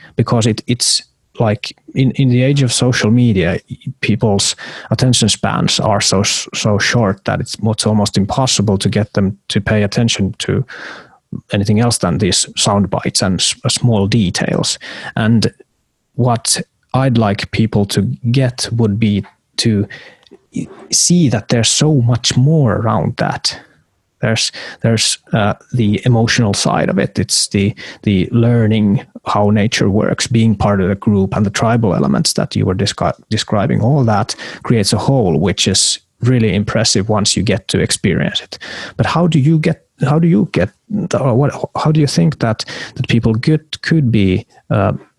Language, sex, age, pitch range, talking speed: Finnish, male, 30-49, 105-130 Hz, 160 wpm